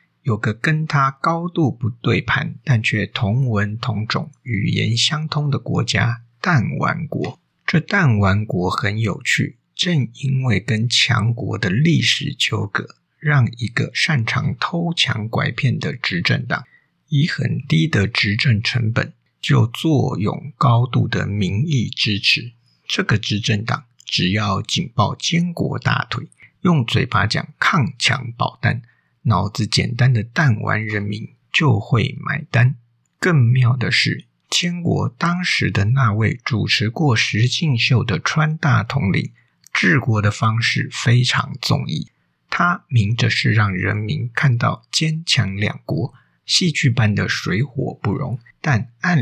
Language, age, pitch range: Chinese, 50-69, 110-150 Hz